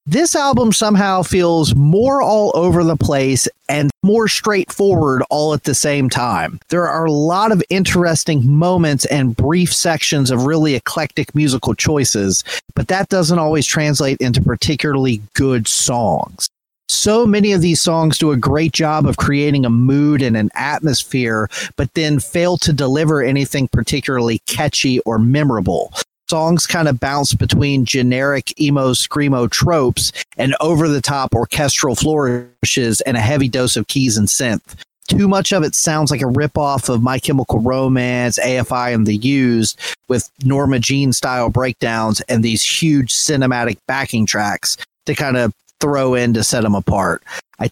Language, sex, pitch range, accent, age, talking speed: English, male, 125-155 Hz, American, 30-49, 155 wpm